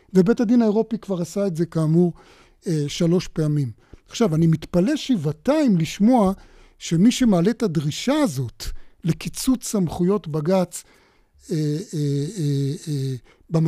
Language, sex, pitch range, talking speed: Hebrew, male, 170-210 Hz, 110 wpm